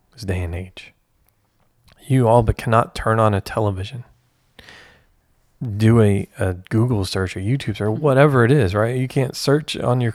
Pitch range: 100-130 Hz